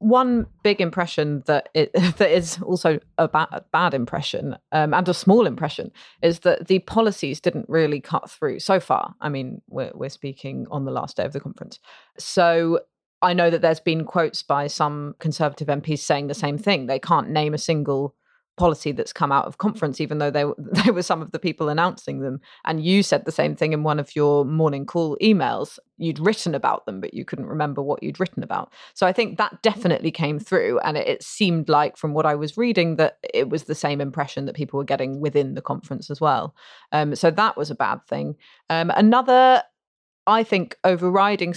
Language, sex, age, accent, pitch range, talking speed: English, female, 30-49, British, 145-175 Hz, 210 wpm